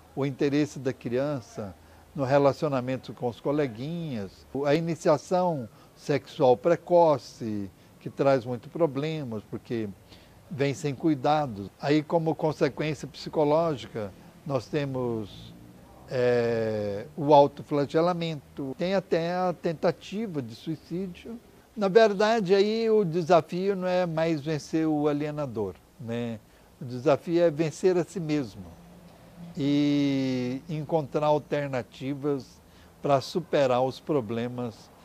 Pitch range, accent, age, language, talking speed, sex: 115-160 Hz, Brazilian, 60-79, Portuguese, 105 wpm, male